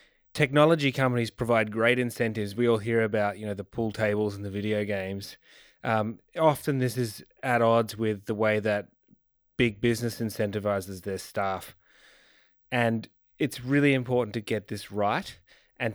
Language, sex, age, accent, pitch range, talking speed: English, male, 20-39, Australian, 105-120 Hz, 160 wpm